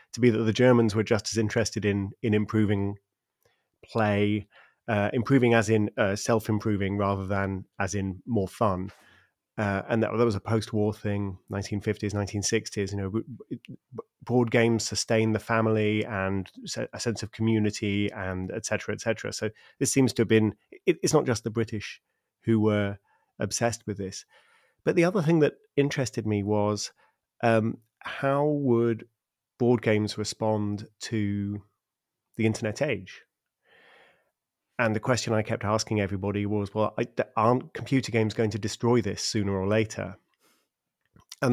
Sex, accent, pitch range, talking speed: male, British, 105-125 Hz, 155 wpm